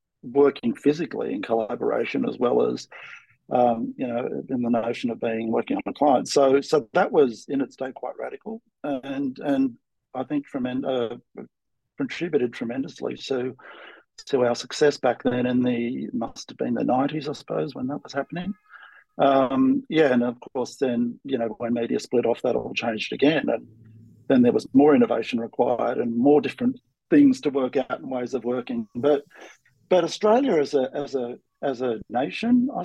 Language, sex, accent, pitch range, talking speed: English, male, Australian, 125-205 Hz, 180 wpm